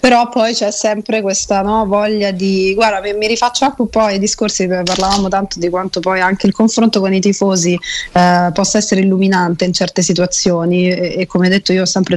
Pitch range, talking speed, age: 180-220 Hz, 195 wpm, 30-49